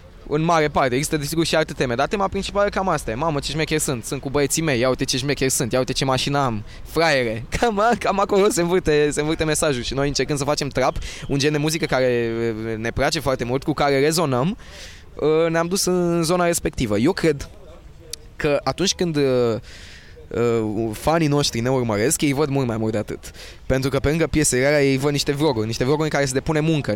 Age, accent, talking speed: 20-39, native, 210 wpm